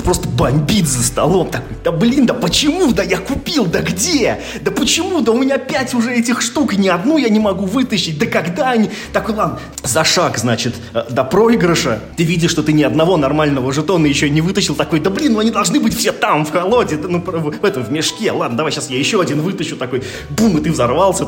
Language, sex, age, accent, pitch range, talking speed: Russian, male, 20-39, native, 120-180 Hz, 225 wpm